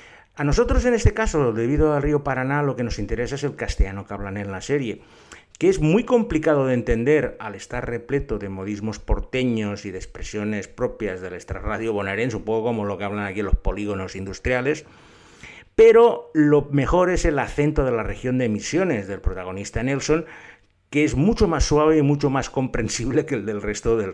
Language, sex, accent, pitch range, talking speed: Spanish, male, Spanish, 100-145 Hz, 190 wpm